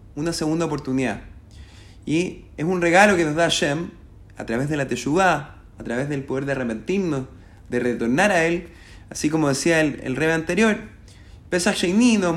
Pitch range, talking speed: 110-160 Hz, 175 wpm